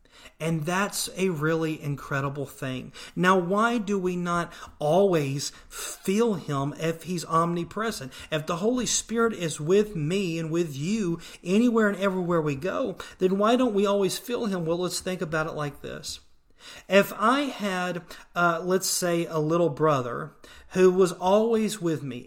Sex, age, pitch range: male, 40-59, 160-195 Hz